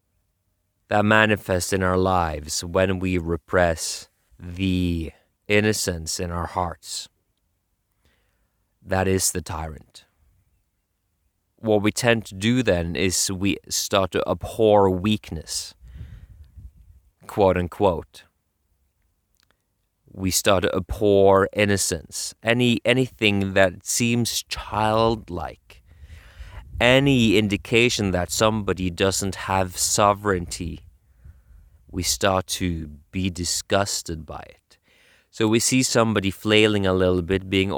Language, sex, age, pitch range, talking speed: English, male, 30-49, 85-105 Hz, 100 wpm